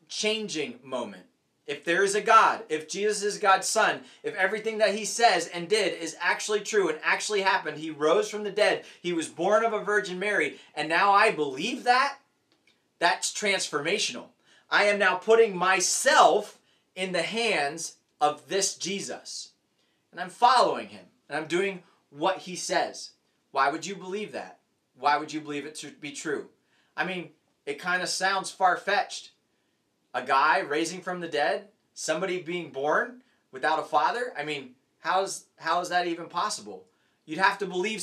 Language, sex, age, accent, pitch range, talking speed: English, male, 30-49, American, 165-210 Hz, 170 wpm